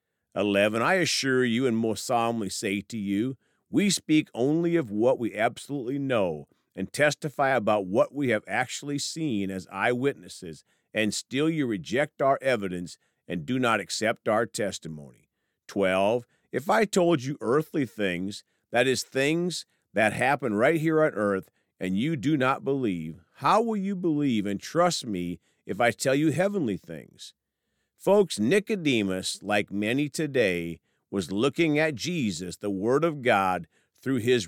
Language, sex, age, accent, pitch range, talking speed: English, male, 50-69, American, 100-145 Hz, 155 wpm